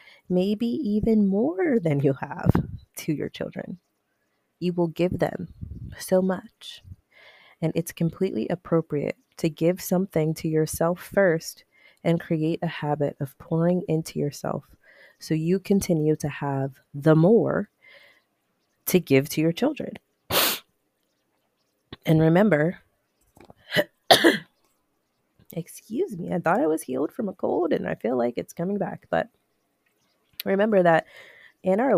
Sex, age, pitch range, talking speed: female, 30-49, 145-185 Hz, 130 wpm